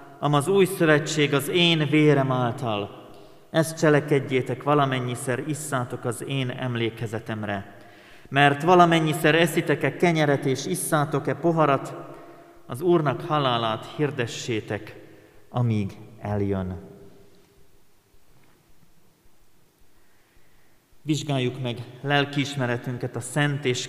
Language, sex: Hungarian, male